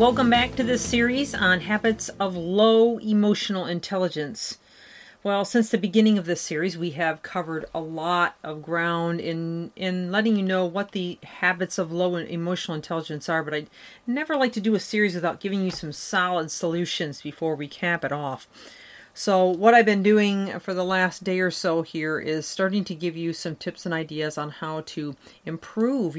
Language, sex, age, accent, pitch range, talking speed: English, female, 40-59, American, 165-200 Hz, 190 wpm